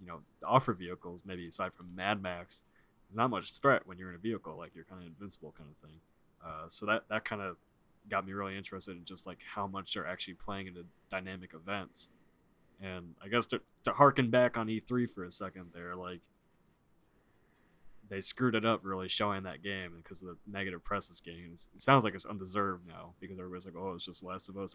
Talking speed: 220 wpm